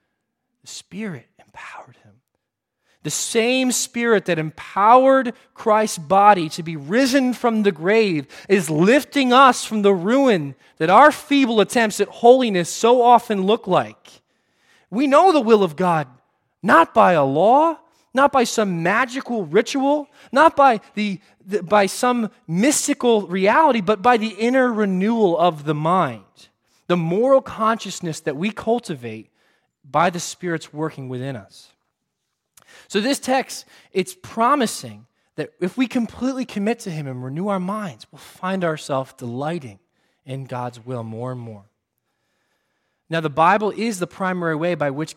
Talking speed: 145 wpm